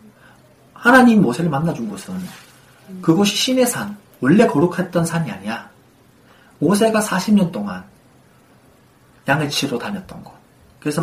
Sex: male